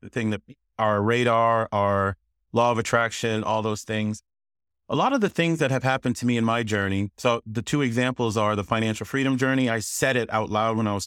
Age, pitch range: 30-49, 105-130 Hz